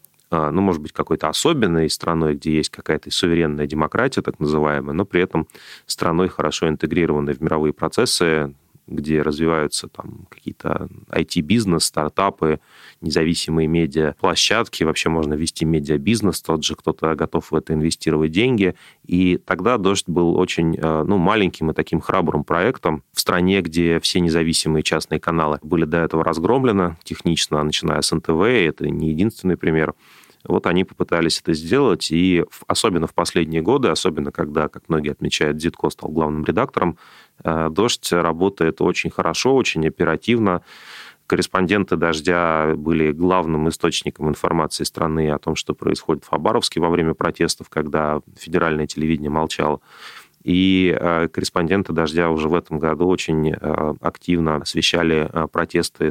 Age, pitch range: 30-49, 80-85 Hz